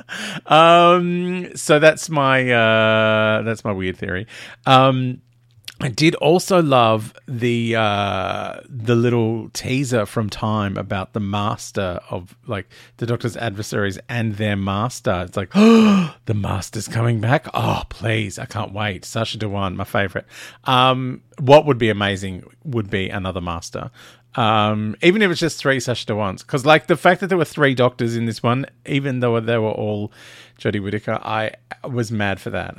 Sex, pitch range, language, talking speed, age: male, 110-140 Hz, English, 165 wpm, 40-59